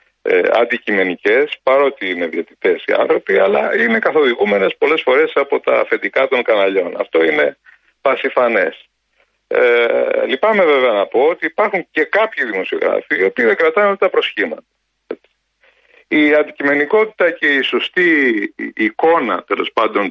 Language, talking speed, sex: Greek, 130 wpm, male